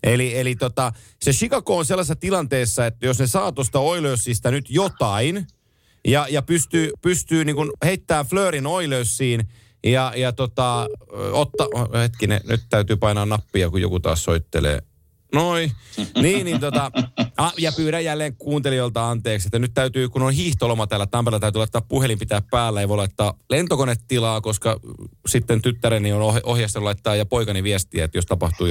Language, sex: Finnish, male